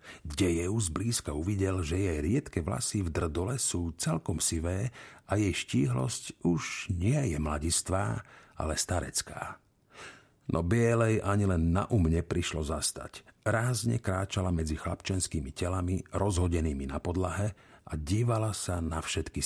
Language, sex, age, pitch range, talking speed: Slovak, male, 50-69, 85-120 Hz, 130 wpm